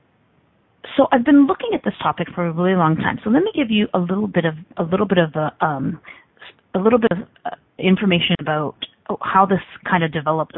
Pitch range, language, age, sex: 170-235 Hz, English, 30-49, female